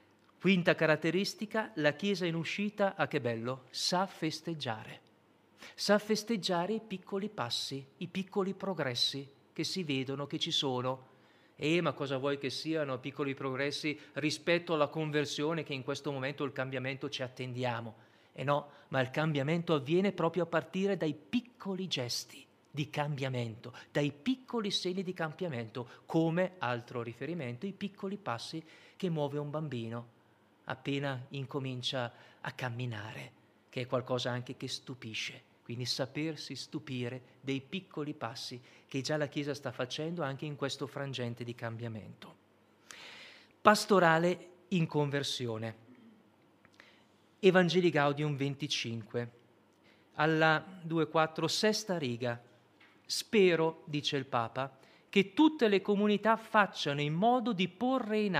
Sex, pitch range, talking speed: male, 130-175 Hz, 130 wpm